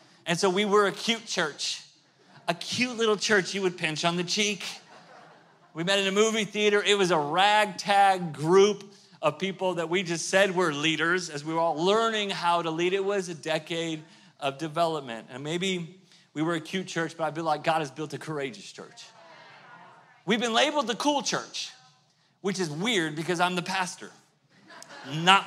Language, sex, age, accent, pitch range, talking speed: English, male, 40-59, American, 165-205 Hz, 190 wpm